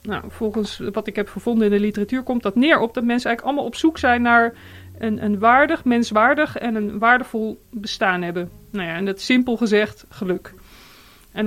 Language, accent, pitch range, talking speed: Dutch, Dutch, 205-235 Hz, 200 wpm